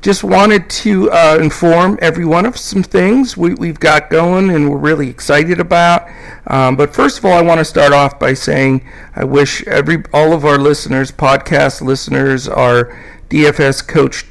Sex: male